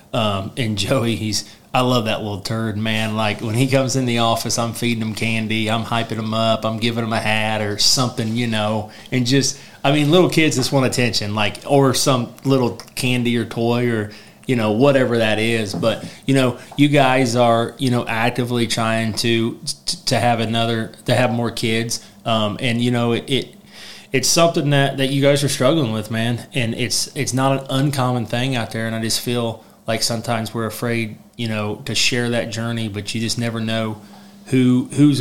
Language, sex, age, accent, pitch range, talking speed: English, male, 30-49, American, 110-125 Hz, 215 wpm